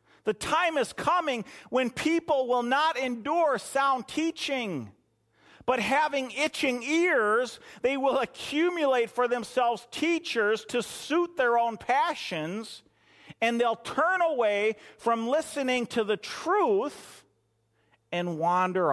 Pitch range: 175-245 Hz